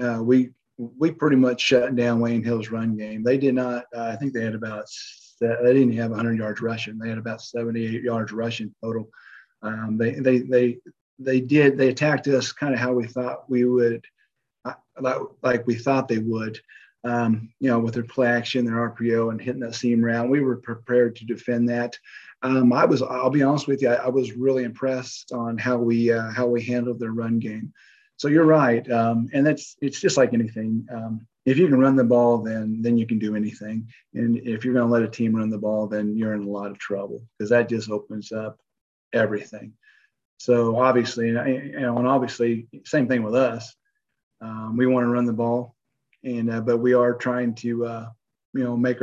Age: 40-59